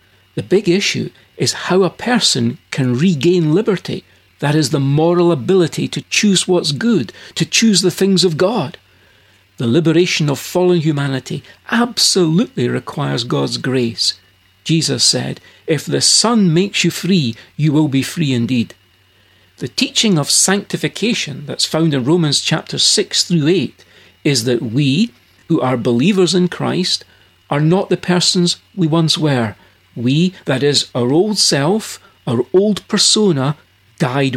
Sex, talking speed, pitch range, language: male, 145 wpm, 125-185 Hz, English